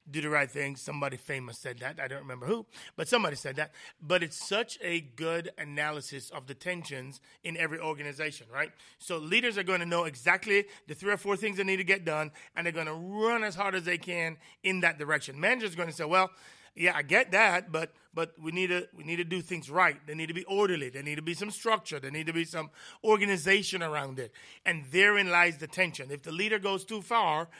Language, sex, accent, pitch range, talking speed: English, male, American, 155-190 Hz, 240 wpm